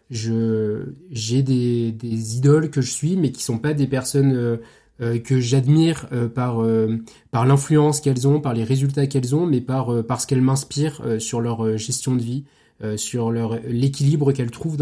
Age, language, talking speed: 20-39, French, 165 wpm